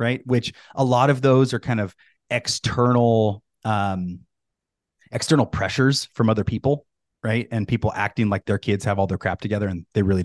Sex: male